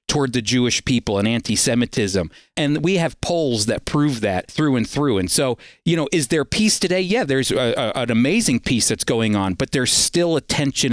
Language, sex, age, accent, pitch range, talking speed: English, male, 40-59, American, 120-155 Hz, 215 wpm